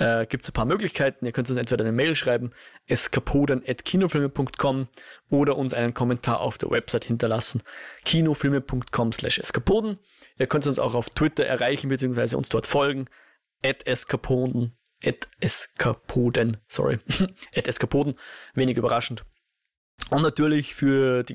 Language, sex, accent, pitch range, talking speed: German, male, German, 120-145 Hz, 120 wpm